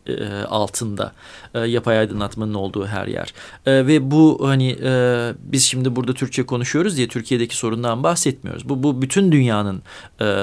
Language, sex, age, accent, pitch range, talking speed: Turkish, male, 40-59, native, 115-170 Hz, 155 wpm